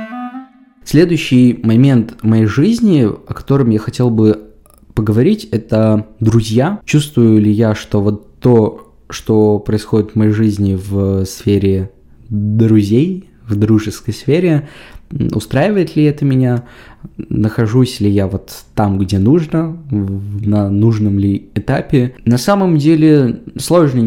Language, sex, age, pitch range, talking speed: Russian, male, 20-39, 105-130 Hz, 120 wpm